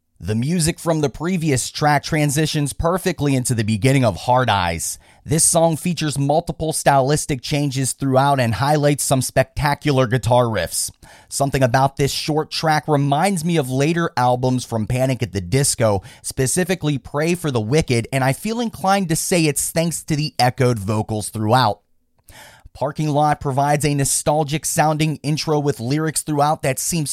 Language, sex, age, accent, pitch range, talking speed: English, male, 30-49, American, 125-160 Hz, 155 wpm